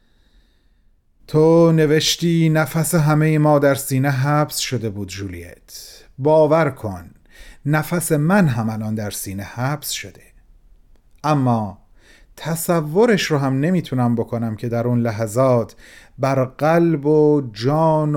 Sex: male